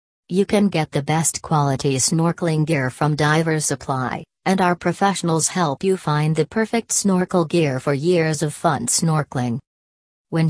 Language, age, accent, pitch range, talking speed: English, 40-59, American, 145-180 Hz, 155 wpm